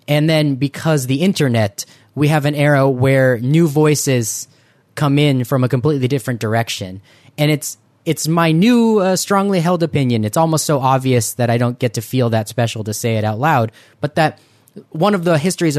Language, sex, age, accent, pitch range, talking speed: English, male, 20-39, American, 120-150 Hz, 195 wpm